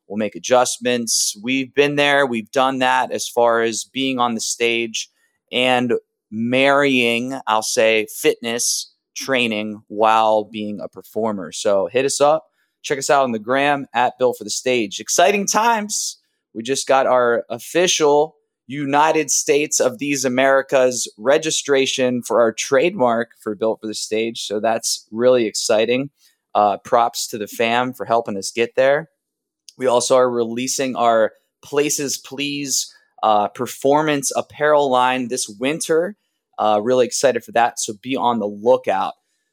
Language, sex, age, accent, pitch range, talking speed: English, male, 20-39, American, 115-140 Hz, 150 wpm